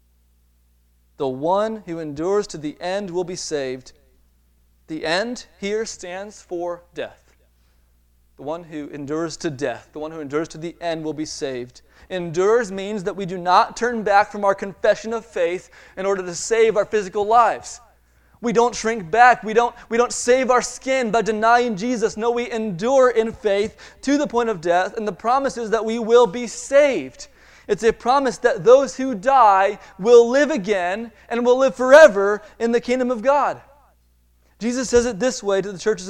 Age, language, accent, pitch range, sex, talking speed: 30-49, English, American, 140-225 Hz, male, 185 wpm